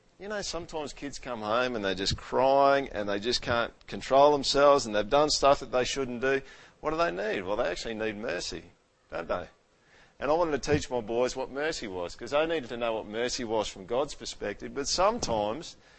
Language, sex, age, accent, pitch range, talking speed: English, male, 50-69, Australian, 120-145 Hz, 220 wpm